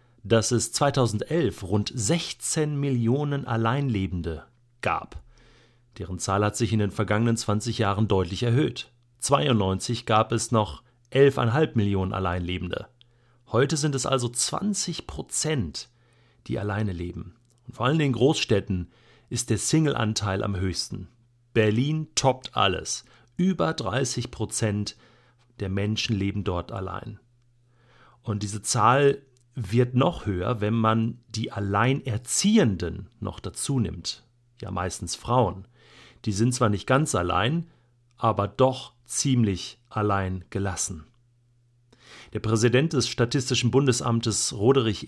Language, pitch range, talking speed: German, 105-130 Hz, 115 wpm